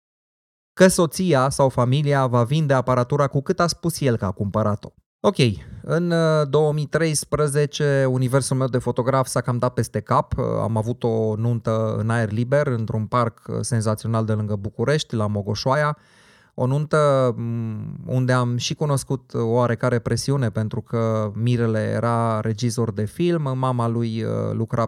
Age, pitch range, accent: 20-39, 115-135 Hz, native